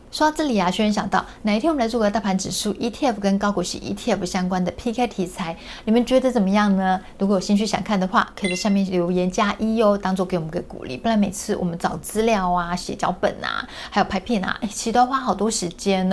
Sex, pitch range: female, 180-225 Hz